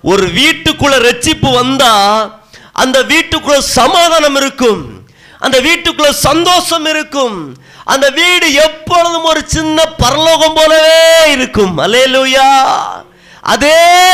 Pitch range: 255-320 Hz